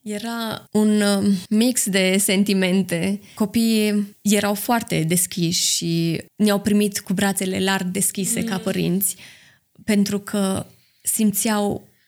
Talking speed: 105 wpm